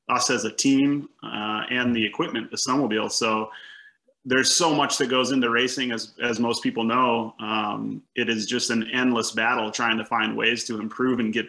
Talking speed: 200 wpm